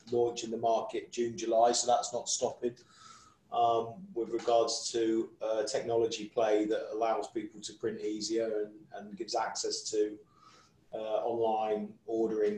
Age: 30-49